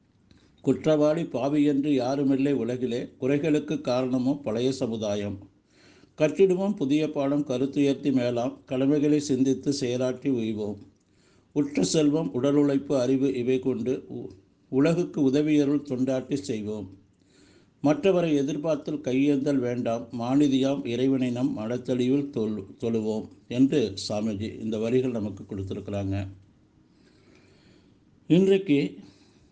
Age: 50-69